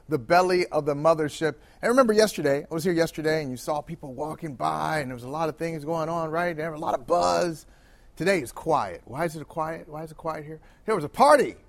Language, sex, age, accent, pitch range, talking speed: English, male, 40-59, American, 145-195 Hz, 255 wpm